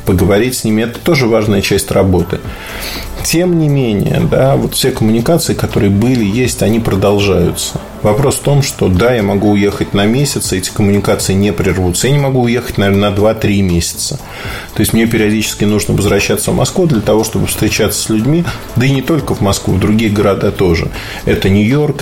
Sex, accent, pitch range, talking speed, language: male, native, 100-125 Hz, 185 wpm, Russian